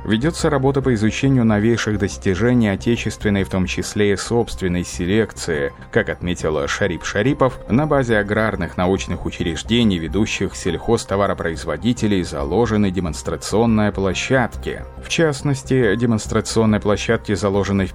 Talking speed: 110 wpm